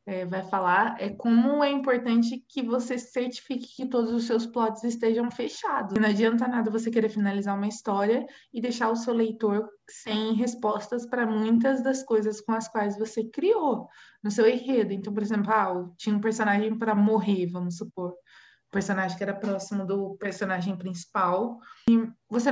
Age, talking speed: 20-39, 175 wpm